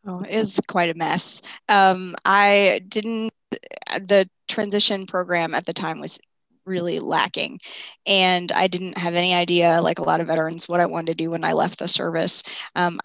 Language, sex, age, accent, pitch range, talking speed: English, female, 20-39, American, 170-190 Hz, 180 wpm